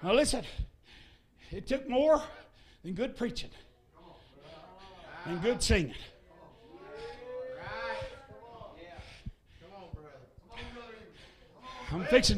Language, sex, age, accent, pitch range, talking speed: English, male, 60-79, American, 185-255 Hz, 65 wpm